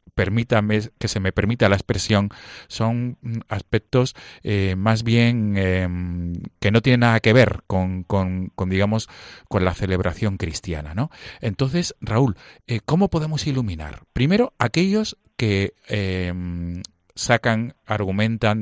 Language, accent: Spanish, Spanish